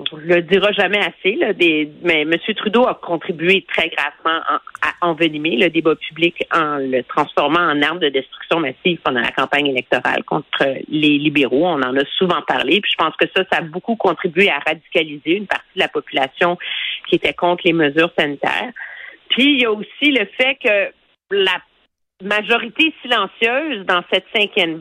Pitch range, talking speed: 160-220 Hz, 185 wpm